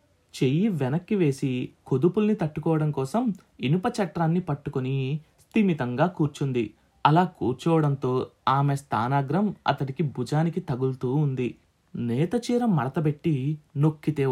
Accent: native